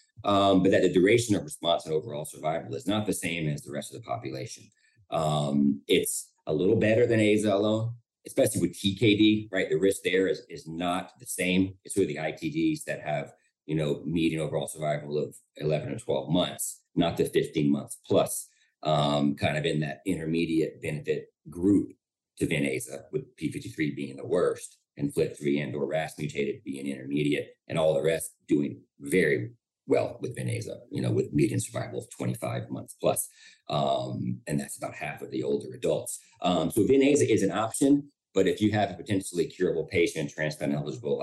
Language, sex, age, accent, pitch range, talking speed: English, male, 40-59, American, 70-100 Hz, 190 wpm